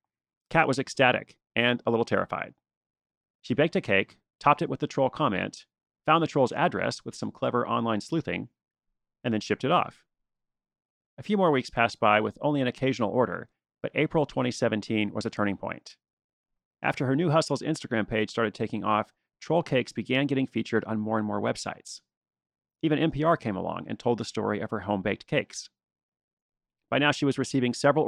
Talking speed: 185 wpm